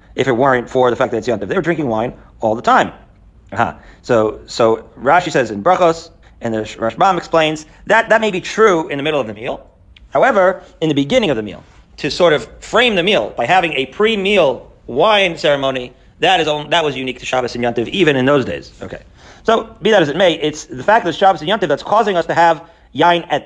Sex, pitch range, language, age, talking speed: male, 125-185 Hz, English, 40-59, 235 wpm